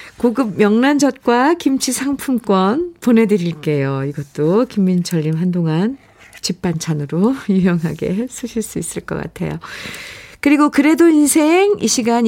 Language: Korean